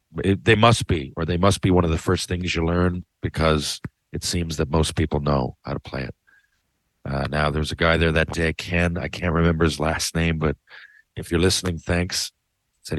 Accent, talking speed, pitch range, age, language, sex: American, 220 wpm, 80-105 Hz, 50-69, English, male